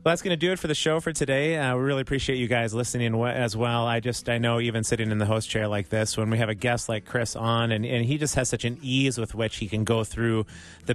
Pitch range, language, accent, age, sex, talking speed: 110-130 Hz, English, American, 30-49, male, 300 wpm